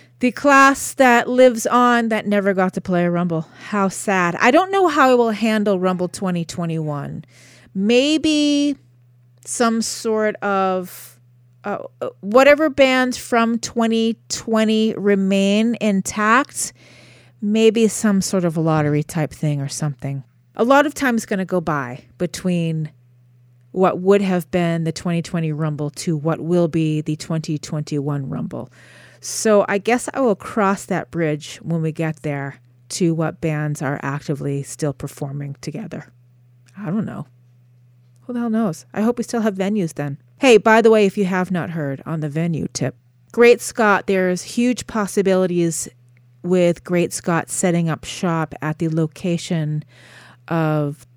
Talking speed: 150 wpm